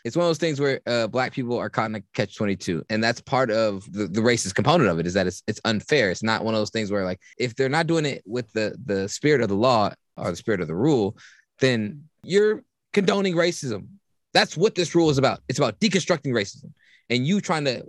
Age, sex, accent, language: 20-39, male, American, English